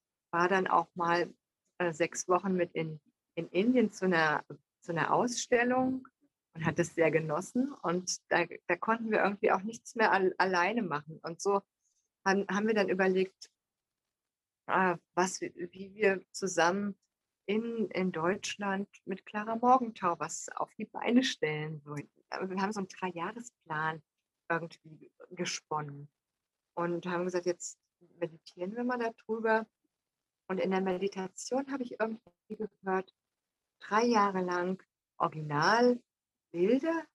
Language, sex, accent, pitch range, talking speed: German, female, German, 175-220 Hz, 130 wpm